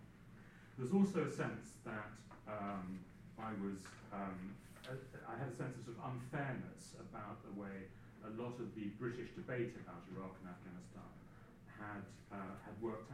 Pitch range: 95-120 Hz